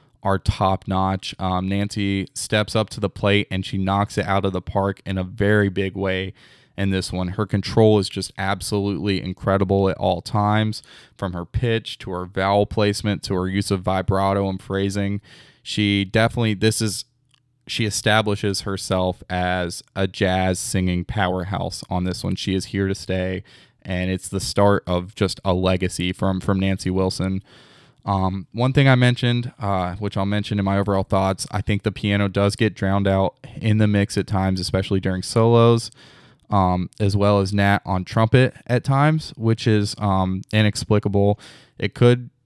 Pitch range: 95-110 Hz